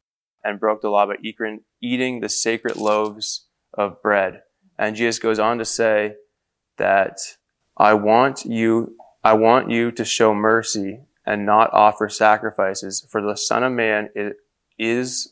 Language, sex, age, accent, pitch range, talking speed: English, male, 20-39, American, 110-125 Hz, 150 wpm